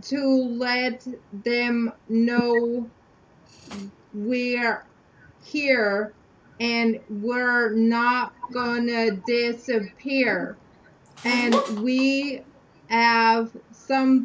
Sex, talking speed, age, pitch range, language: female, 65 wpm, 30-49, 225-260 Hz, English